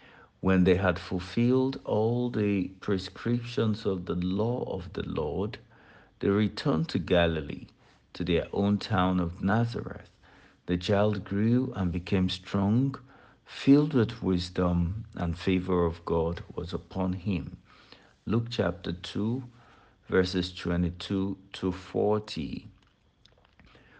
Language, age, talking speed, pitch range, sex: English, 60-79, 110 wpm, 90-115 Hz, male